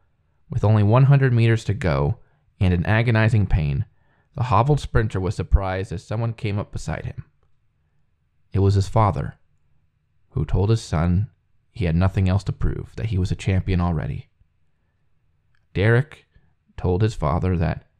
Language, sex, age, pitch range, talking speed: English, male, 20-39, 85-115 Hz, 155 wpm